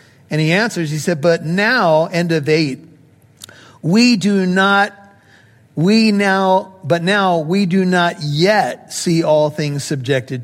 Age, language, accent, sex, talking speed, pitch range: 50-69, English, American, male, 145 wpm, 140-195 Hz